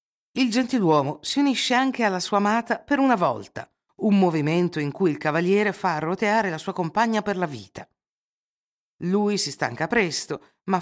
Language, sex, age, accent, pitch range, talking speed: Italian, female, 50-69, native, 150-210 Hz, 165 wpm